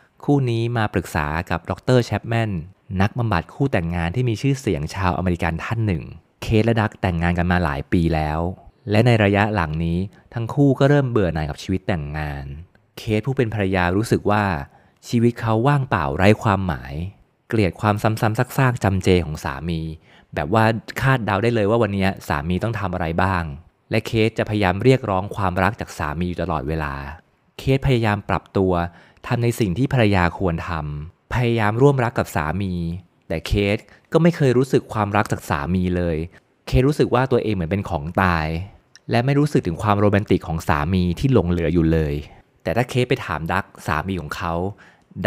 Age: 30-49